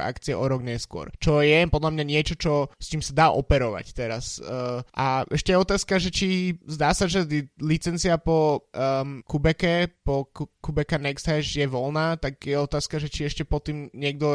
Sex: male